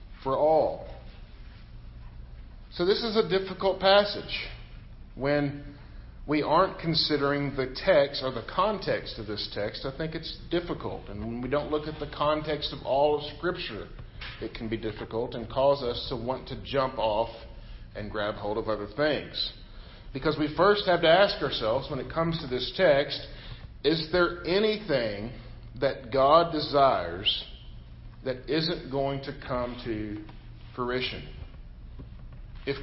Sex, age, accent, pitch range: male, 50-69, American, 115-150 Hz